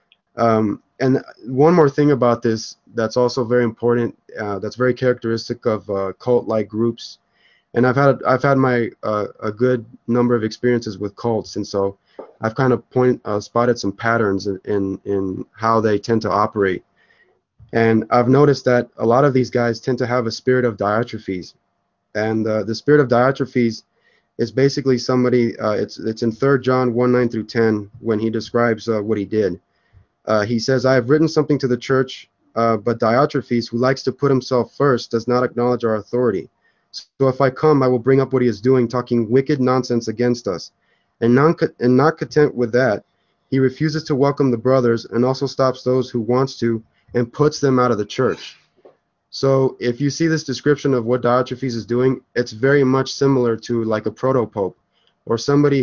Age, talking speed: 20-39, 195 wpm